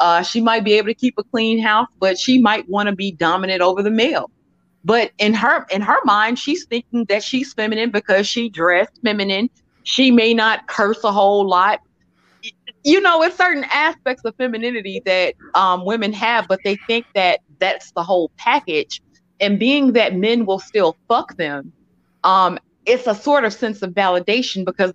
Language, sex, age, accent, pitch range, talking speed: English, female, 30-49, American, 190-250 Hz, 190 wpm